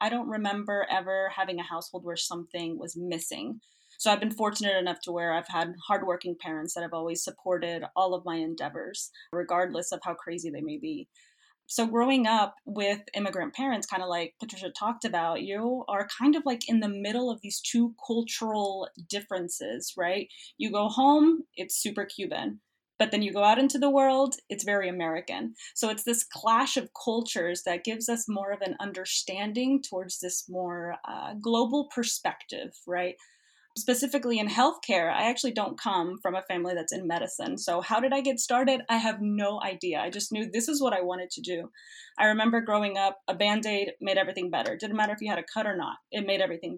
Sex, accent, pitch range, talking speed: female, American, 180-240 Hz, 200 wpm